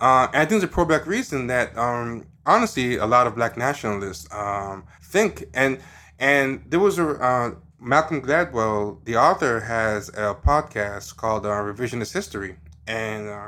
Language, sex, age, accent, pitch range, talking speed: English, male, 20-39, American, 105-130 Hz, 160 wpm